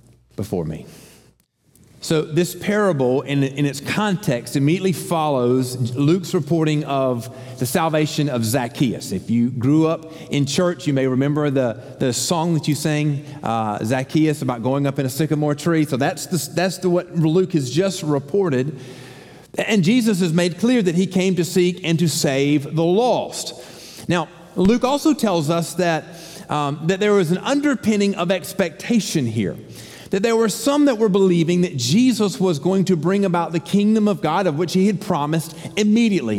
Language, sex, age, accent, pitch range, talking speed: English, male, 40-59, American, 135-185 Hz, 175 wpm